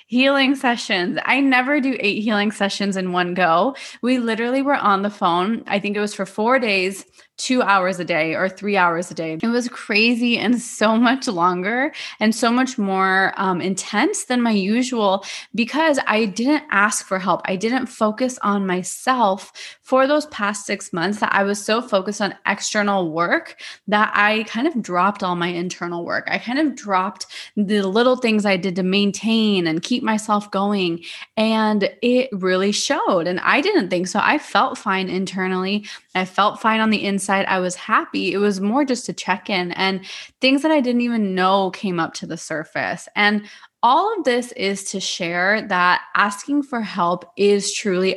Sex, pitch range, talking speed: female, 190-235 Hz, 190 wpm